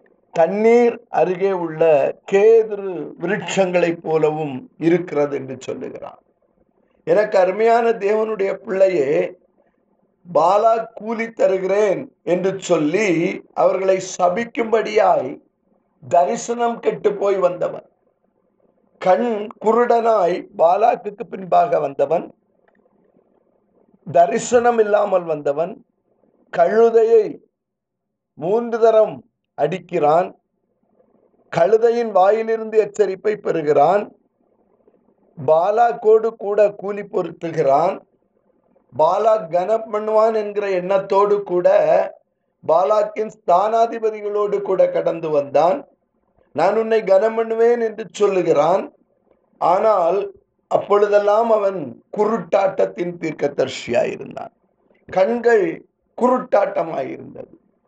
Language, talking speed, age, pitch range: Tamil, 65 wpm, 50-69, 185-230 Hz